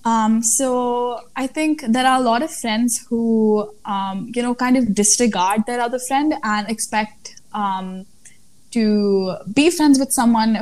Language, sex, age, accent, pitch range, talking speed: English, female, 10-29, Indian, 200-235 Hz, 160 wpm